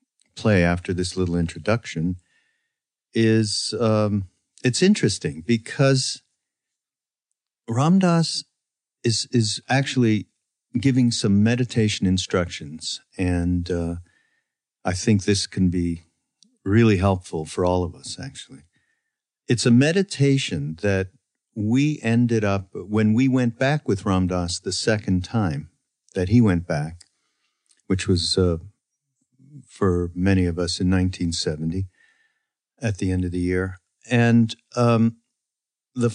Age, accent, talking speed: 50-69, American, 115 wpm